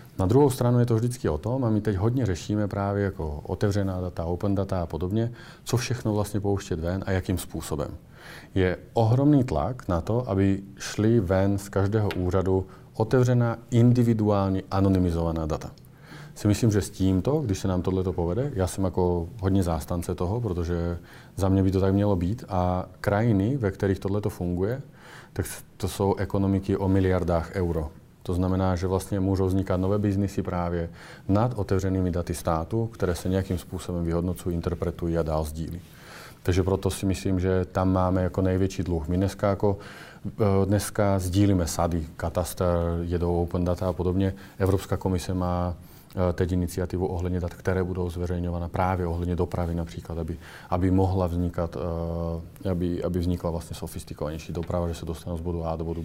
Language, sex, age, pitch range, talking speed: Czech, male, 40-59, 85-100 Hz, 170 wpm